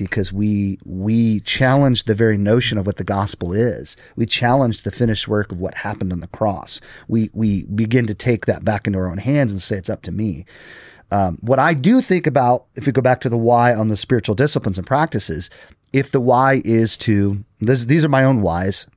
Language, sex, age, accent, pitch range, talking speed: English, male, 30-49, American, 100-135 Hz, 220 wpm